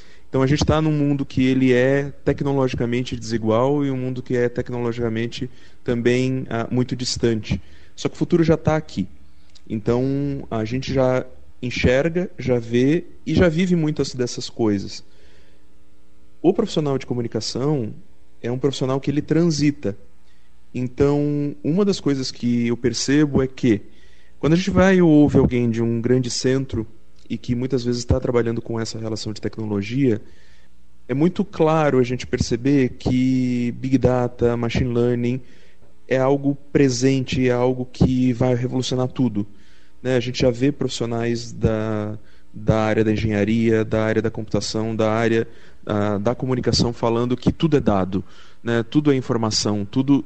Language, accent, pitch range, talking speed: Portuguese, Brazilian, 110-135 Hz, 155 wpm